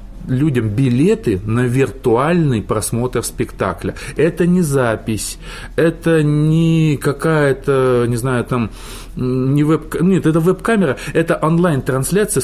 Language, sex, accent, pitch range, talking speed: Russian, male, native, 125-175 Hz, 110 wpm